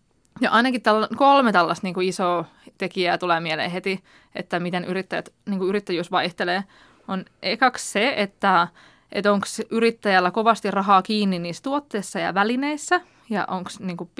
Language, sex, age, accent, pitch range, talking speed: Finnish, female, 20-39, native, 180-230 Hz, 150 wpm